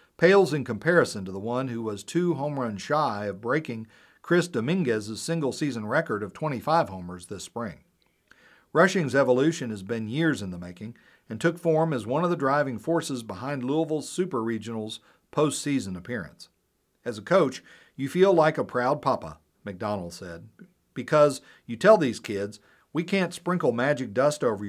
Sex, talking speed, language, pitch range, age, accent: male, 165 wpm, English, 110-160 Hz, 50-69, American